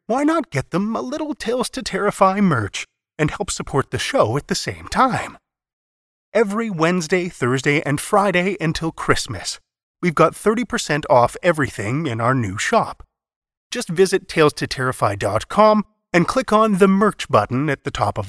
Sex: male